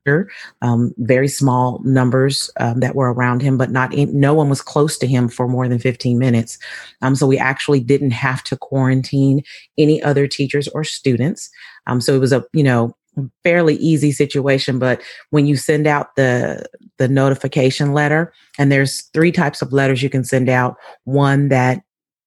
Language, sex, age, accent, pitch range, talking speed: English, female, 30-49, American, 125-140 Hz, 175 wpm